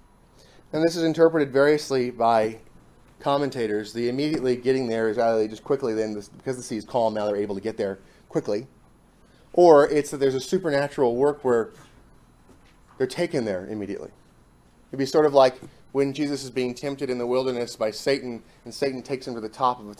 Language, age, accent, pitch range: English, 30-49, American, 110-135 Hz